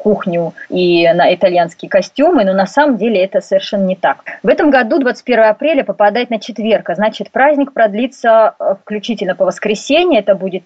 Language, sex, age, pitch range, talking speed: Russian, female, 30-49, 200-265 Hz, 165 wpm